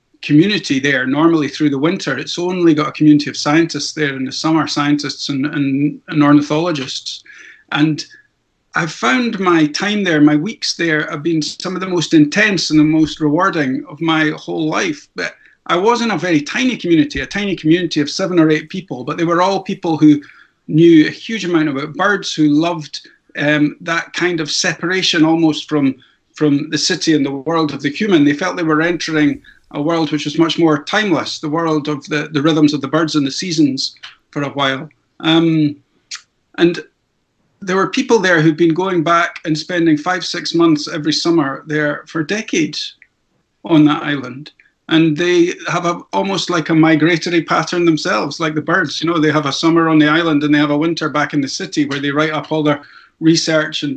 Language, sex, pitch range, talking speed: English, male, 150-170 Hz, 200 wpm